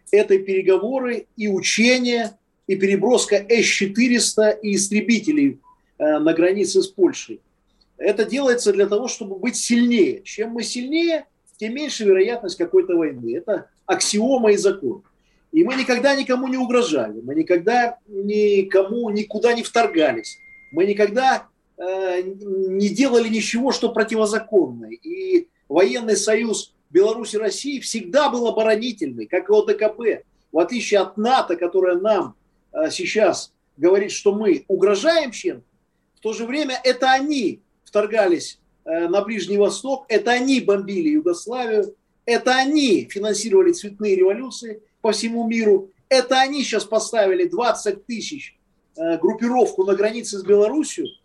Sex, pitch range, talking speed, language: male, 205-285 Hz, 130 wpm, Russian